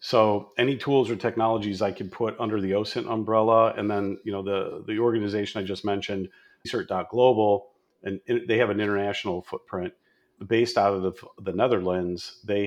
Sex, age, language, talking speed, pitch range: male, 40-59, English, 170 wpm, 95-110 Hz